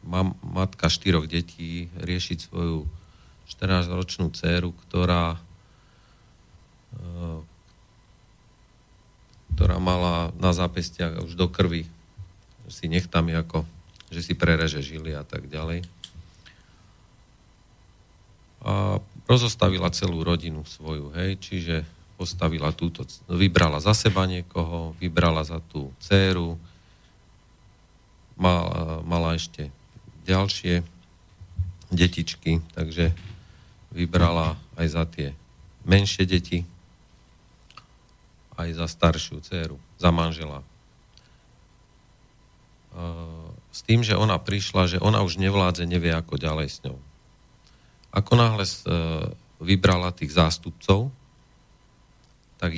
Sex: male